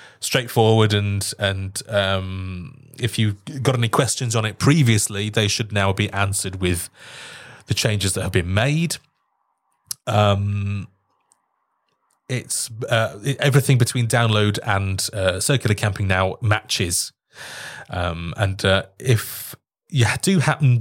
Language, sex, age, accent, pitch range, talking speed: English, male, 30-49, British, 100-135 Hz, 125 wpm